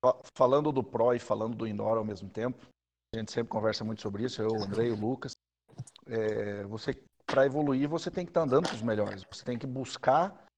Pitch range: 115-150 Hz